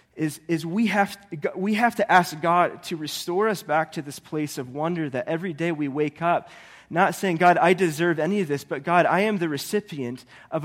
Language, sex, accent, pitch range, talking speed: English, male, American, 145-185 Hz, 225 wpm